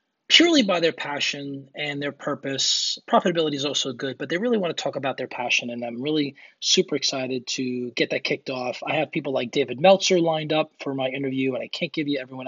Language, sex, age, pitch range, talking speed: English, male, 20-39, 145-200 Hz, 225 wpm